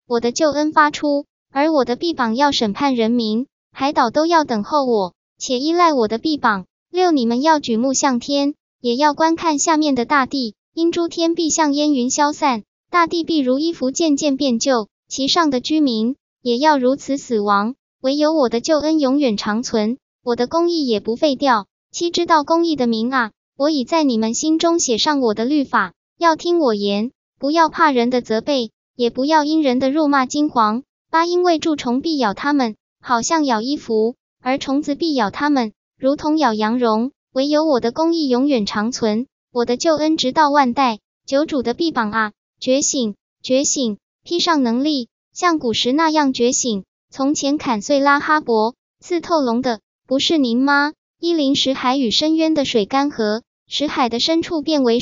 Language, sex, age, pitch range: Chinese, male, 10-29, 240-310 Hz